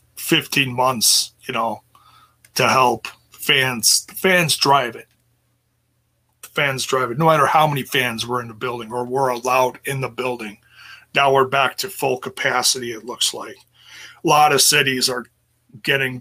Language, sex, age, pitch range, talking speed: English, male, 30-49, 120-135 Hz, 165 wpm